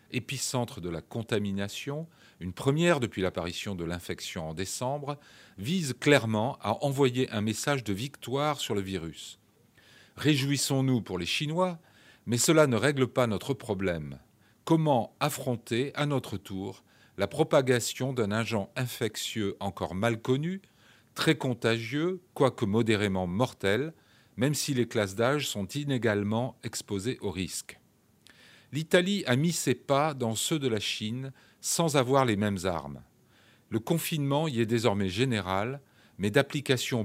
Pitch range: 105-140 Hz